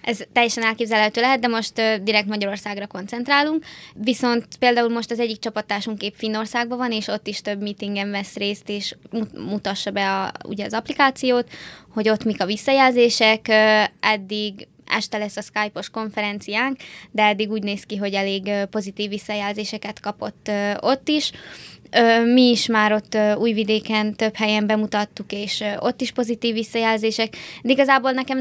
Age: 20-39